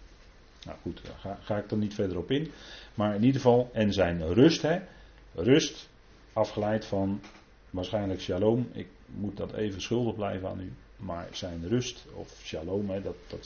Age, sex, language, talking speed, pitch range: 40-59, male, Dutch, 180 wpm, 90-110 Hz